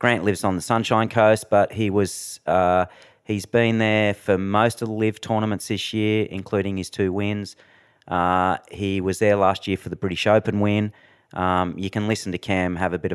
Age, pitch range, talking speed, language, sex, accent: 30-49, 90-110 Hz, 215 wpm, English, male, Australian